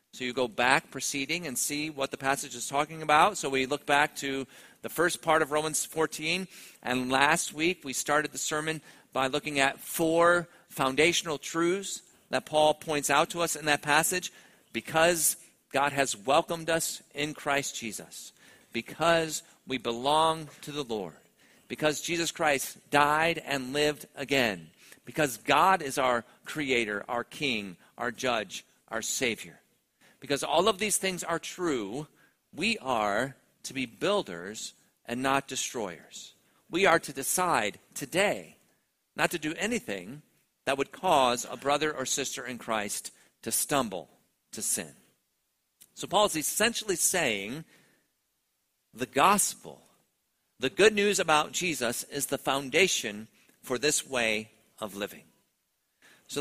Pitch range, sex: 135-165 Hz, male